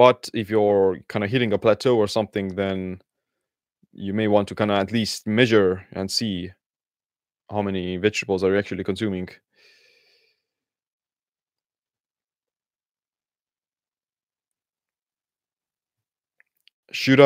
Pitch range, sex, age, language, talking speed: 95-115 Hz, male, 20-39, English, 105 wpm